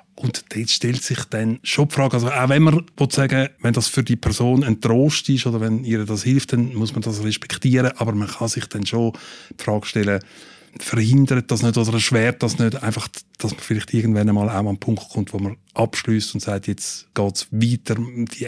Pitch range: 110-130 Hz